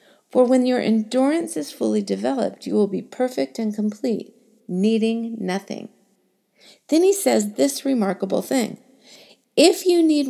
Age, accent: 50-69, American